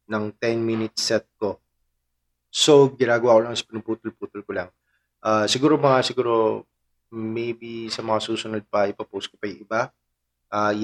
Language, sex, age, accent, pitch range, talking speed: Filipino, male, 20-39, native, 100-125 Hz, 155 wpm